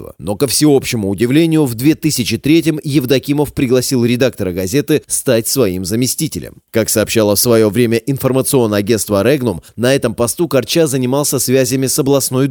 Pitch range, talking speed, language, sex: 110-145 Hz, 140 wpm, Russian, male